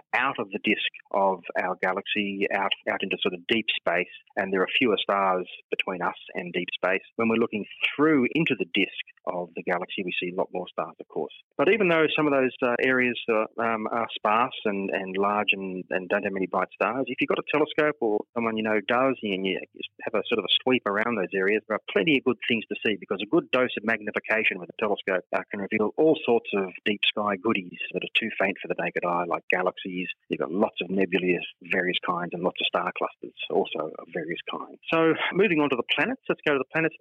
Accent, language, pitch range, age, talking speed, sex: Australian, English, 105-145 Hz, 30-49, 240 wpm, male